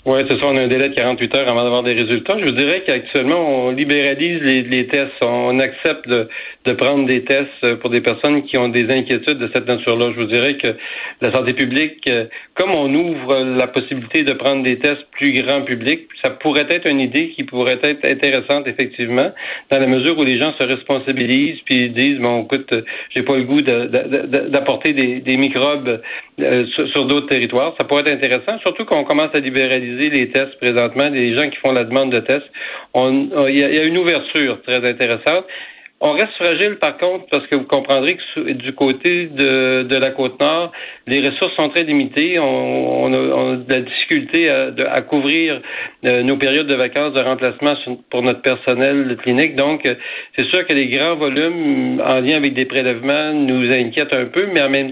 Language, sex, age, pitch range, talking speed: French, male, 40-59, 125-150 Hz, 200 wpm